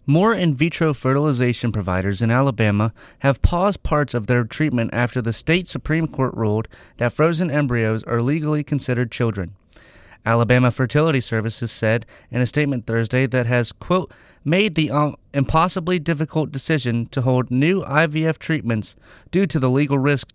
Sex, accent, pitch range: male, American, 115-145 Hz